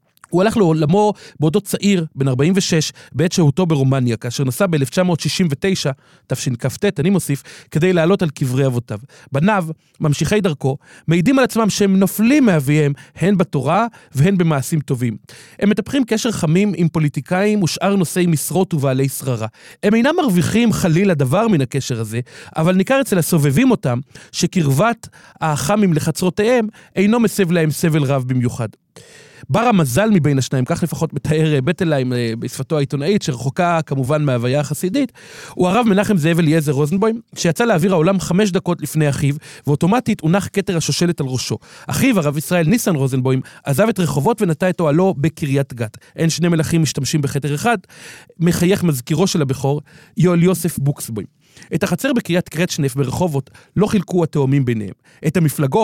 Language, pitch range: Hebrew, 140-190 Hz